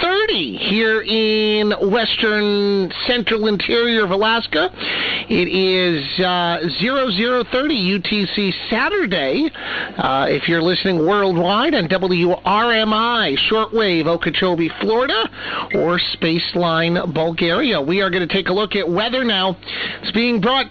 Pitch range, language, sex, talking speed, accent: 190-250 Hz, English, male, 115 wpm, American